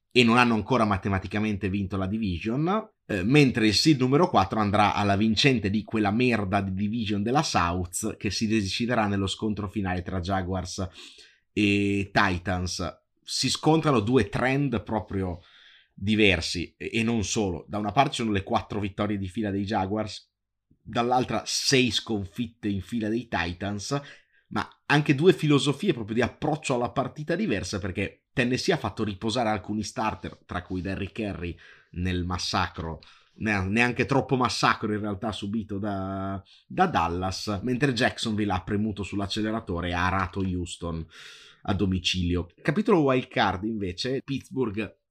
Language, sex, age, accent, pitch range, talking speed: Italian, male, 30-49, native, 95-120 Hz, 145 wpm